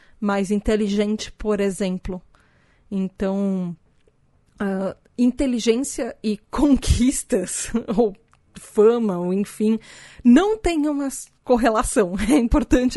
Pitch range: 200-235 Hz